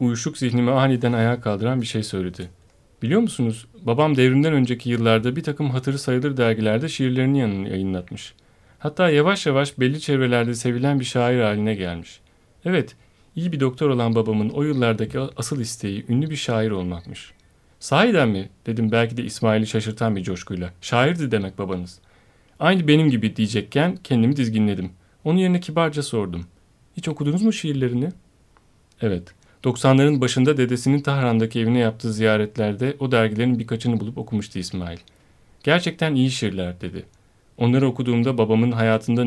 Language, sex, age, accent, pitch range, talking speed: Turkish, male, 40-59, native, 105-135 Hz, 145 wpm